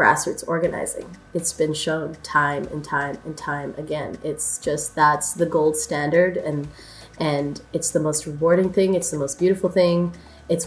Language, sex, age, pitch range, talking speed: English, female, 20-39, 150-190 Hz, 170 wpm